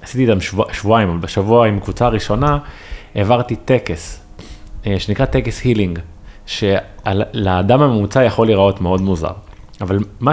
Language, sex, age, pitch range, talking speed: Hebrew, male, 20-39, 95-125 Hz, 120 wpm